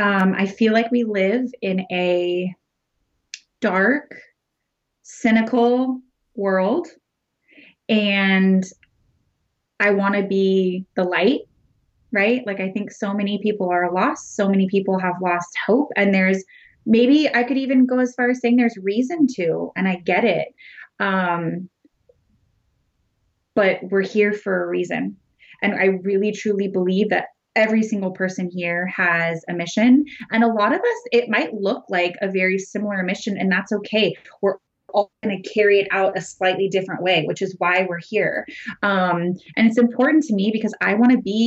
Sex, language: female, English